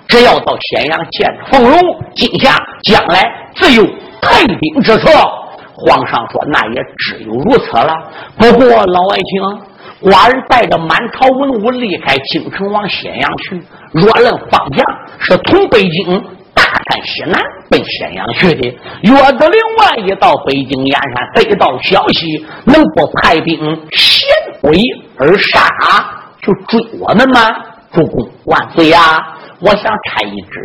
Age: 50-69